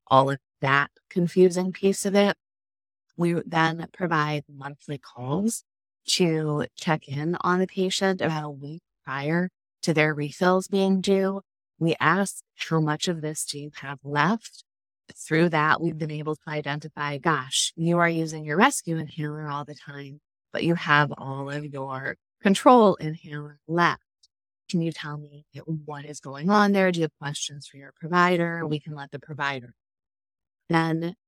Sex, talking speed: female, 165 wpm